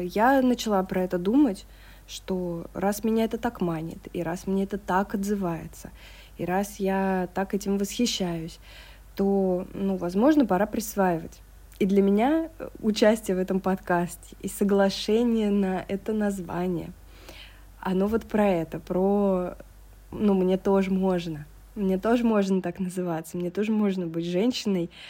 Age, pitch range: 20-39, 175-205 Hz